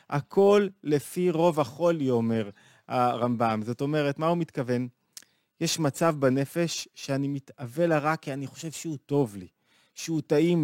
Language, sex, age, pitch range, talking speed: Hebrew, male, 30-49, 130-165 Hz, 145 wpm